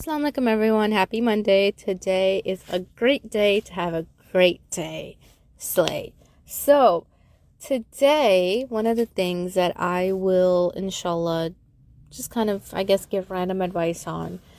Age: 20-39